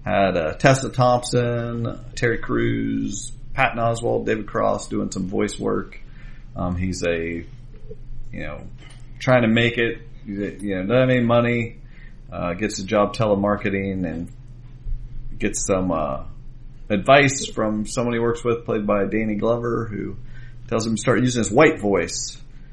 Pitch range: 100-125 Hz